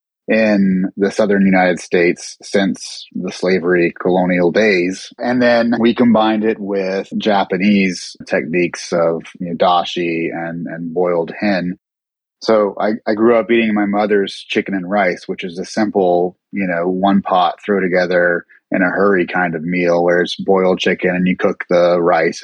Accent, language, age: American, English, 30-49